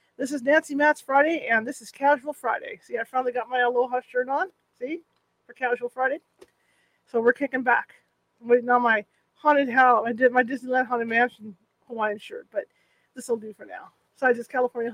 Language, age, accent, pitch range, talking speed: English, 40-59, American, 230-285 Hz, 190 wpm